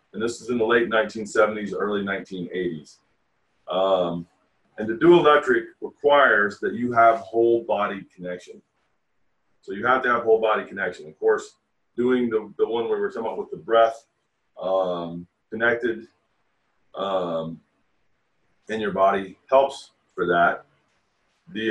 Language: English